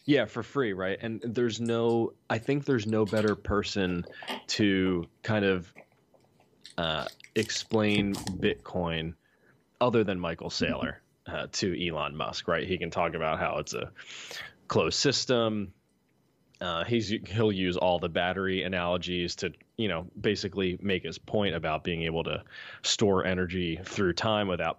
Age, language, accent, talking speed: 20-39, English, American, 145 wpm